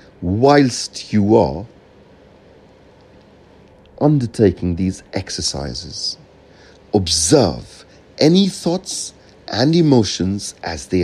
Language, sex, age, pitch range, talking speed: English, male, 60-79, 95-145 Hz, 70 wpm